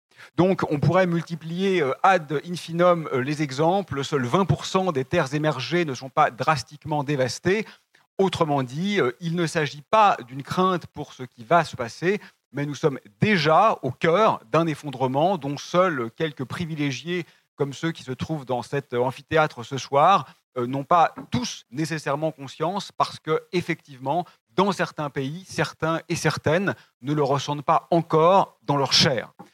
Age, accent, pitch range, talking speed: 40-59, French, 140-180 Hz, 150 wpm